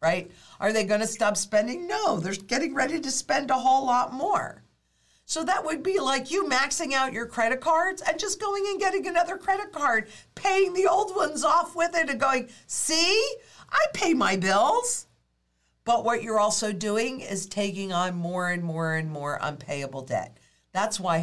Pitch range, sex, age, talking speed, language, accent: 155-235 Hz, female, 50-69, 190 wpm, English, American